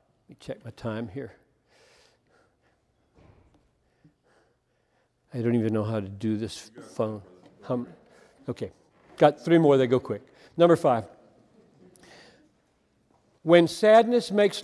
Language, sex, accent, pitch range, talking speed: English, male, American, 120-165 Hz, 110 wpm